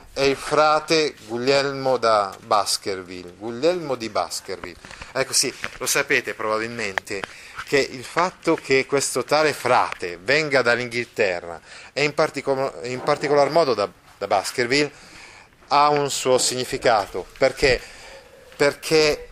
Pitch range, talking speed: 125-160 Hz, 115 wpm